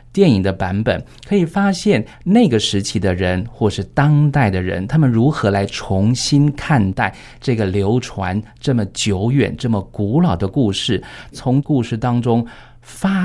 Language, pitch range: Chinese, 105-145 Hz